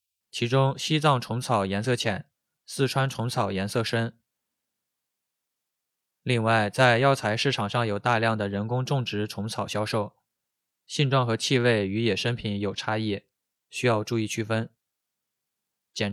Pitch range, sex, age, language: 105-130 Hz, male, 20-39, Chinese